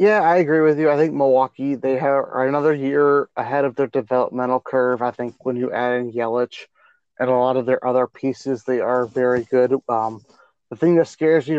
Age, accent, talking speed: 30-49, American, 210 wpm